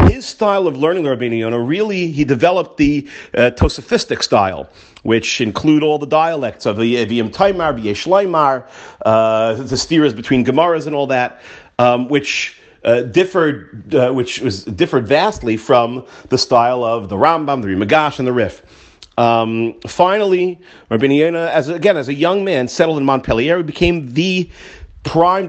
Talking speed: 160 wpm